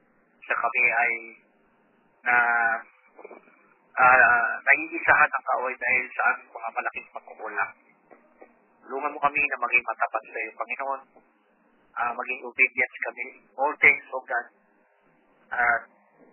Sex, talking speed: male, 125 wpm